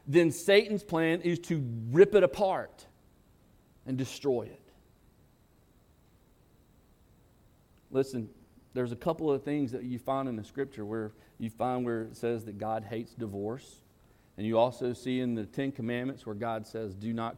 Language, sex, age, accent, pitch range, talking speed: English, male, 40-59, American, 110-140 Hz, 160 wpm